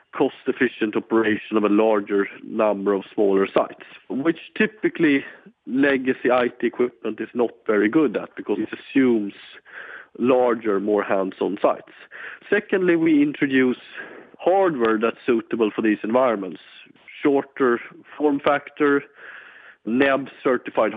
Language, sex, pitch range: English, male, 110-150 Hz